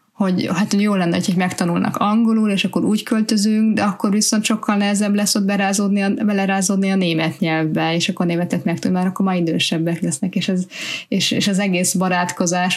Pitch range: 175-205 Hz